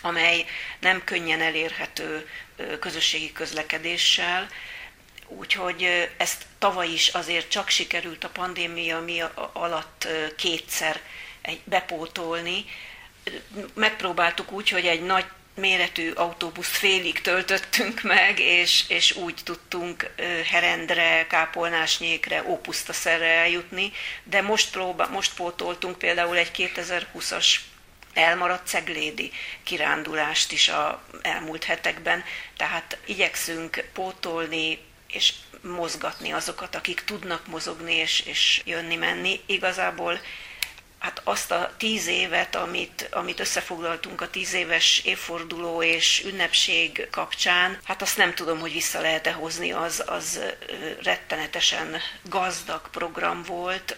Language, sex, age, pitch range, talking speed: Hungarian, female, 40-59, 165-185 Hz, 105 wpm